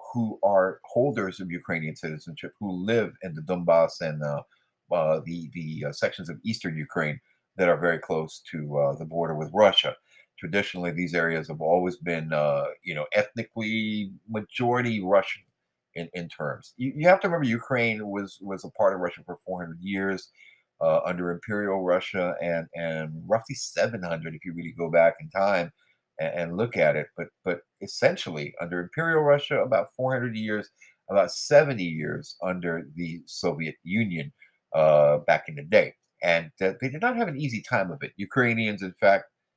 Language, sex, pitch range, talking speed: English, male, 85-125 Hz, 175 wpm